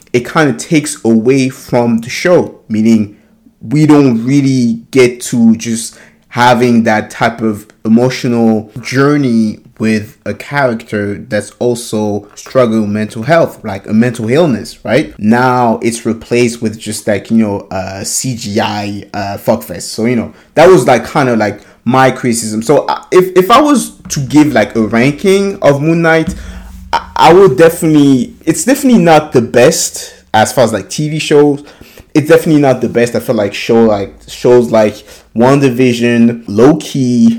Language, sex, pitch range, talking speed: English, male, 110-140 Hz, 160 wpm